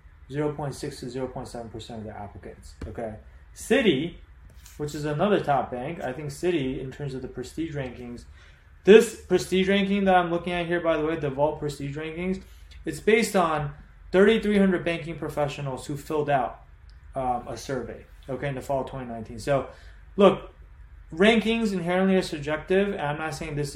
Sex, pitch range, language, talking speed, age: male, 130-175 Hz, English, 165 wpm, 20-39